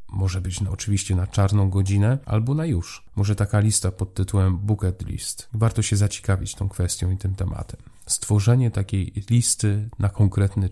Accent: native